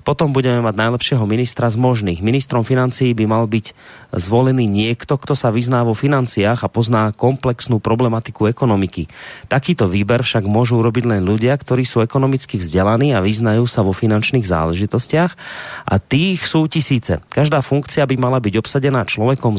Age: 30-49